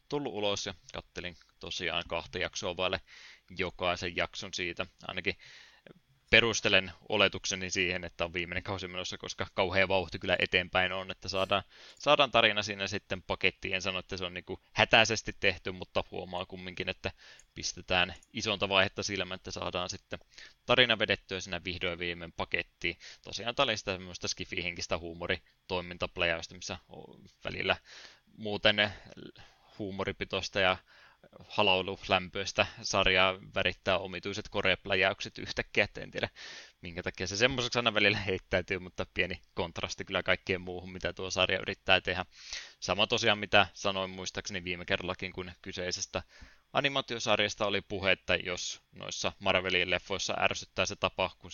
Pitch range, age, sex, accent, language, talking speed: 90-100 Hz, 20-39, male, native, Finnish, 135 wpm